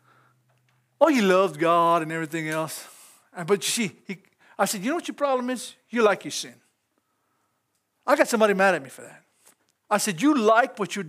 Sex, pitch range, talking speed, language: male, 185-255 Hz, 195 wpm, English